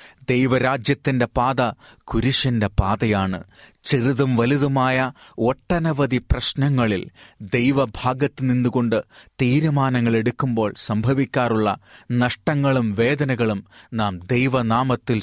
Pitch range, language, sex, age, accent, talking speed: 110-135 Hz, Malayalam, male, 30-49, native, 65 wpm